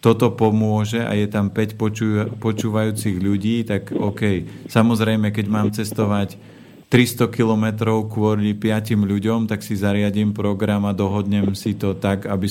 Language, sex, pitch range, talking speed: Slovak, male, 105-115 Hz, 145 wpm